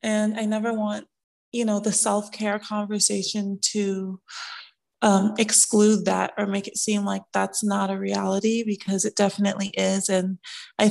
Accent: American